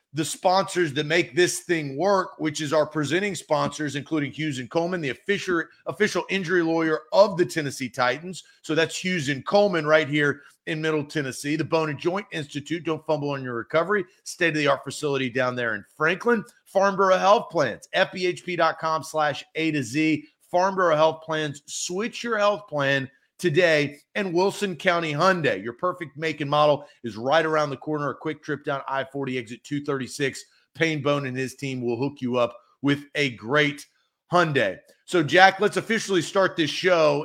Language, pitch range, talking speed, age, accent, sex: English, 145-180 Hz, 175 wpm, 40-59, American, male